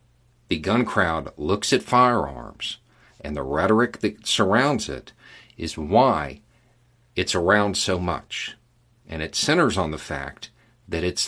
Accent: American